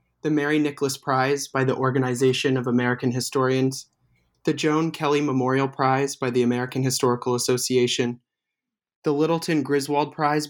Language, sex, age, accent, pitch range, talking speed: English, male, 20-39, American, 125-145 Hz, 135 wpm